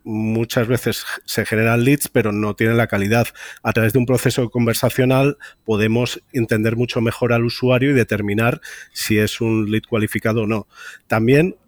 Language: Spanish